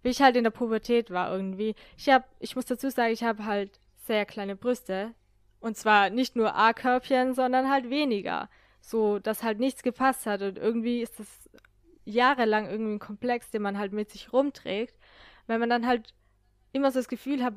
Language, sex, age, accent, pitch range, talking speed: German, female, 10-29, German, 210-255 Hz, 195 wpm